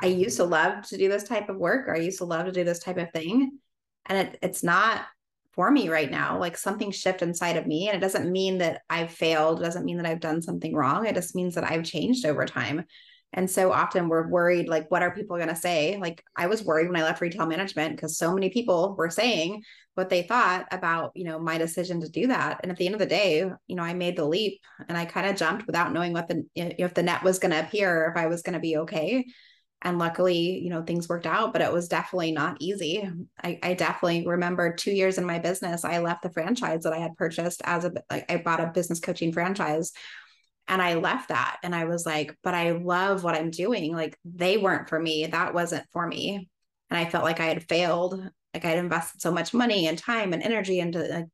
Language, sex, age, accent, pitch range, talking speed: English, female, 20-39, American, 165-185 Hz, 250 wpm